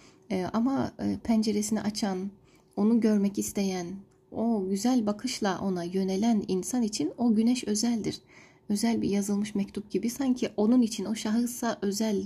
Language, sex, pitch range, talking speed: Turkish, female, 195-235 Hz, 130 wpm